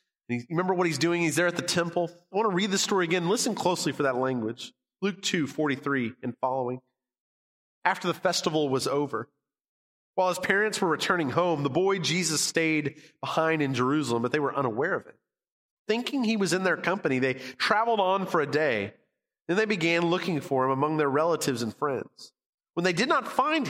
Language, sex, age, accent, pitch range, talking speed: English, male, 30-49, American, 145-200 Hz, 195 wpm